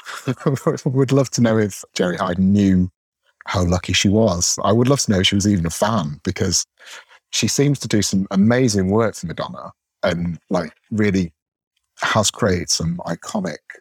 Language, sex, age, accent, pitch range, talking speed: English, male, 30-49, British, 95-120 Hz, 180 wpm